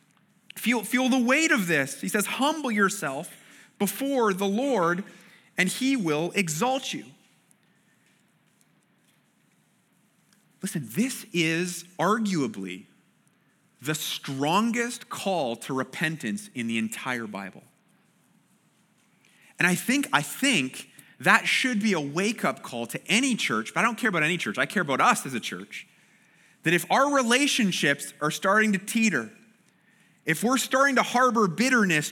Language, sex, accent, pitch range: English, male, American, 175-235 Hz